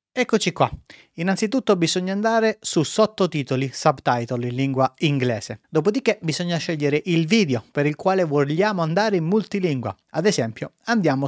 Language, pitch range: Italian, 130-175 Hz